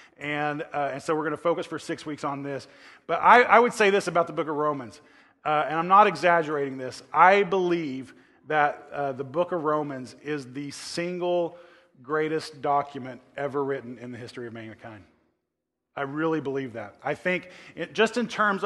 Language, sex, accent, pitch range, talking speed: English, male, American, 140-170 Hz, 190 wpm